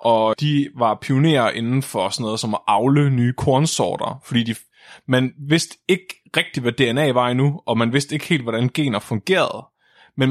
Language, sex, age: Danish, male, 20-39